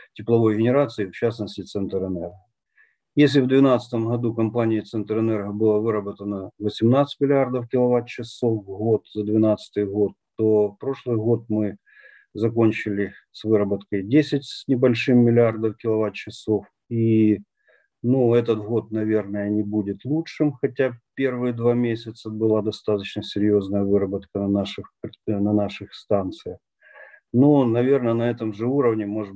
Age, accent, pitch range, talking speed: 50-69, native, 105-120 Hz, 130 wpm